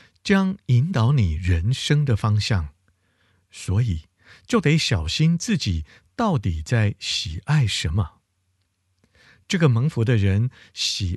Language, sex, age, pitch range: Chinese, male, 50-69, 95-130 Hz